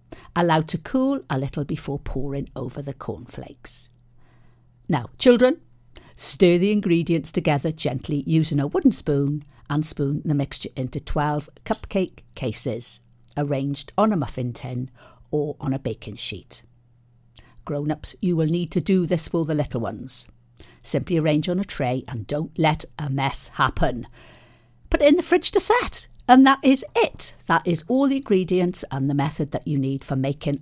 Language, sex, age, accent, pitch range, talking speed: English, female, 50-69, British, 135-175 Hz, 165 wpm